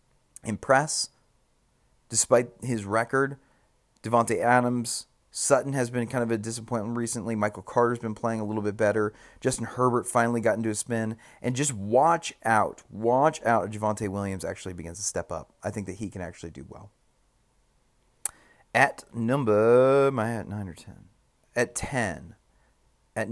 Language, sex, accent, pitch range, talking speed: English, male, American, 105-125 Hz, 155 wpm